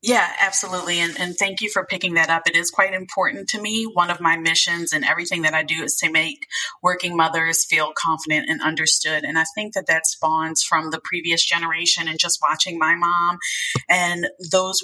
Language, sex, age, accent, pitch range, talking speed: English, female, 30-49, American, 165-190 Hz, 205 wpm